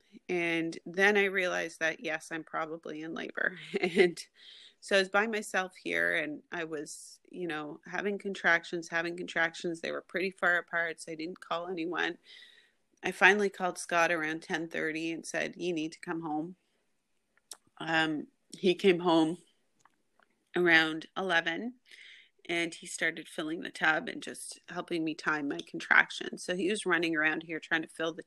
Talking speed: 165 wpm